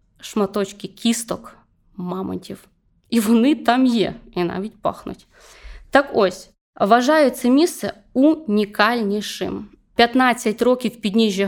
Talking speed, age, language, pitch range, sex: 100 wpm, 20-39, Ukrainian, 195-235 Hz, female